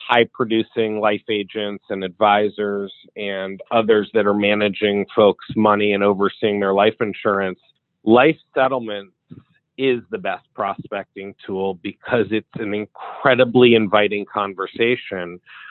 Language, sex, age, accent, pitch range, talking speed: English, male, 40-59, American, 105-135 Hz, 120 wpm